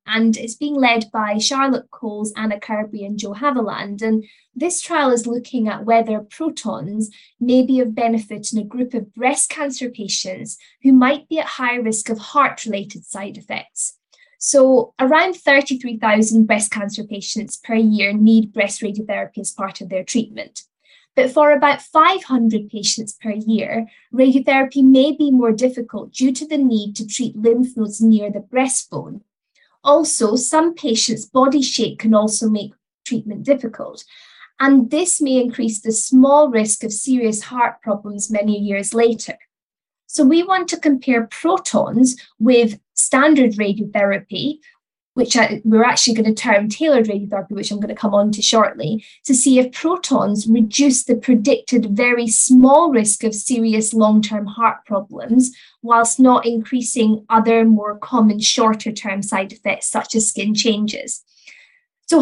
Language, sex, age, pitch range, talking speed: English, female, 10-29, 215-265 Hz, 155 wpm